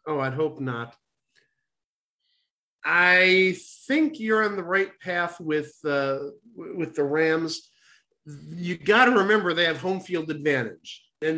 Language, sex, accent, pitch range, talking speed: English, male, American, 155-205 Hz, 135 wpm